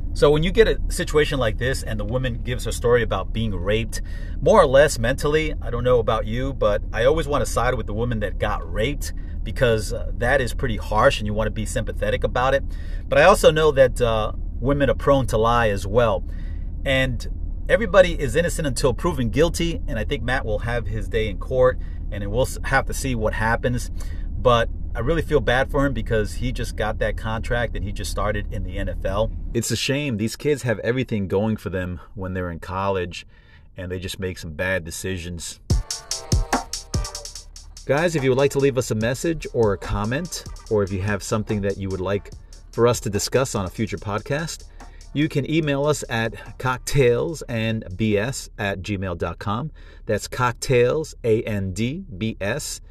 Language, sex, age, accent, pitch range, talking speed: English, male, 40-59, American, 95-125 Hz, 195 wpm